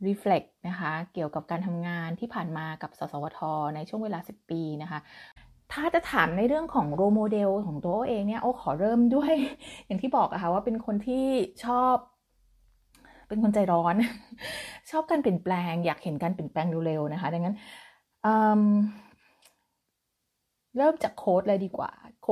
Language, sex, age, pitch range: Thai, female, 20-39, 175-235 Hz